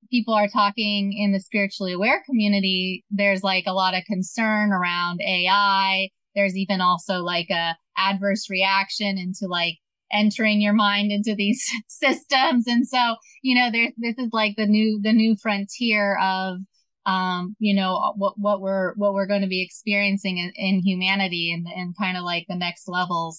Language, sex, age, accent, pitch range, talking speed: English, female, 20-39, American, 180-205 Hz, 175 wpm